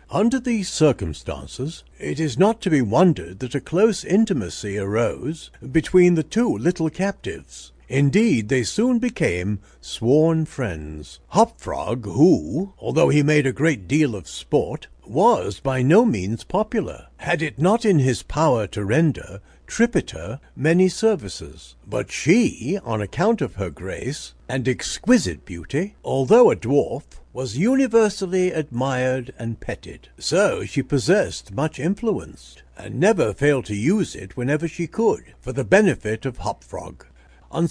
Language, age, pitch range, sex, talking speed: English, 60-79, 105-175 Hz, male, 140 wpm